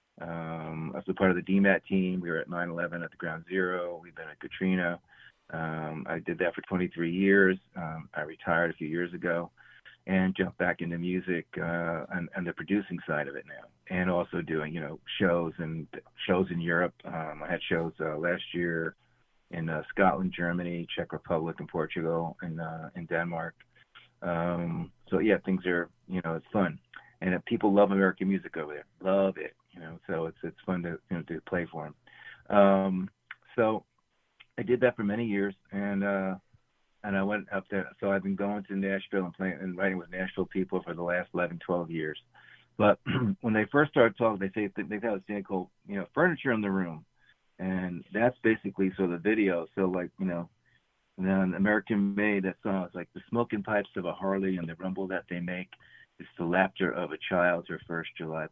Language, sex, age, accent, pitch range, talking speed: English, male, 30-49, American, 85-100 Hz, 205 wpm